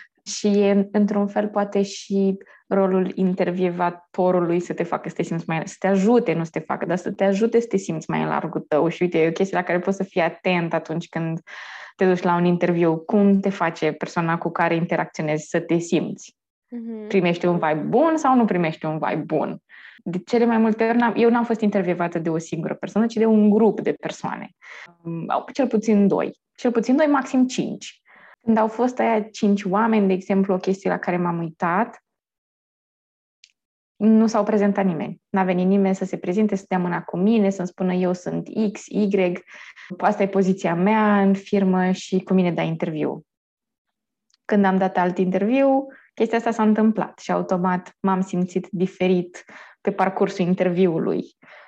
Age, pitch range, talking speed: 20-39, 180-215 Hz, 185 wpm